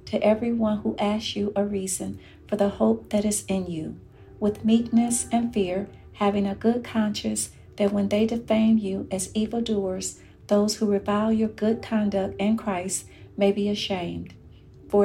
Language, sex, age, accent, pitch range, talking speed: English, female, 40-59, American, 195-220 Hz, 165 wpm